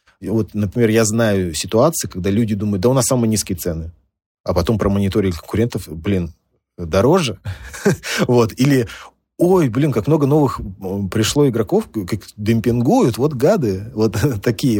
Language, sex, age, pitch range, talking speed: Russian, male, 30-49, 95-120 Hz, 145 wpm